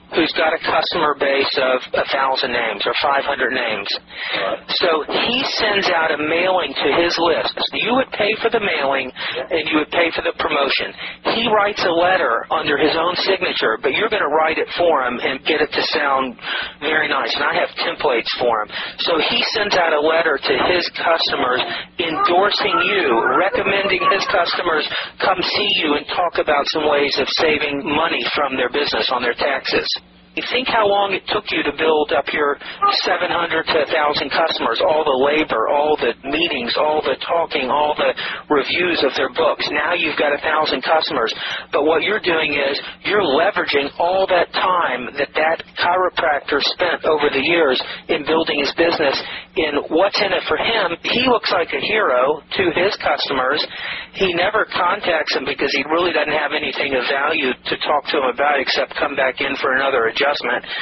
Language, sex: English, male